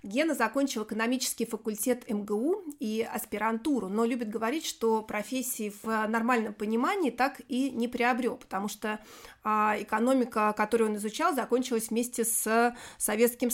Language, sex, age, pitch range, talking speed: Russian, female, 30-49, 210-255 Hz, 130 wpm